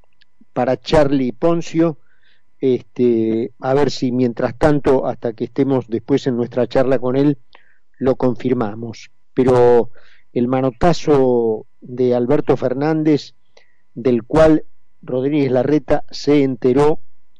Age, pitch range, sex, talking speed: 50-69, 120-145 Hz, male, 105 wpm